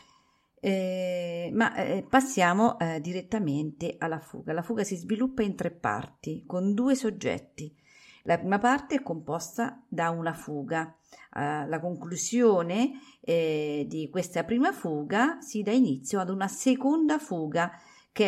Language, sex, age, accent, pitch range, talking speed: Italian, female, 40-59, native, 160-230 Hz, 140 wpm